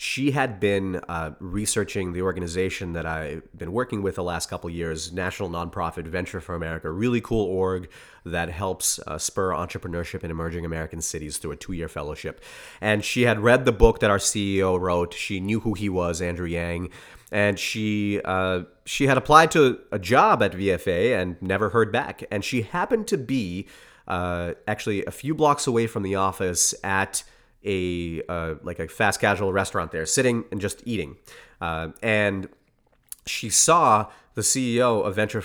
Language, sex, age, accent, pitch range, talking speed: English, male, 30-49, American, 90-110 Hz, 180 wpm